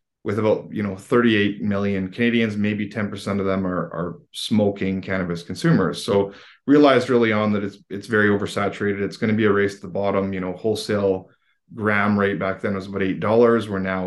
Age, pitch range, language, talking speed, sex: 20-39, 100-115 Hz, English, 195 wpm, male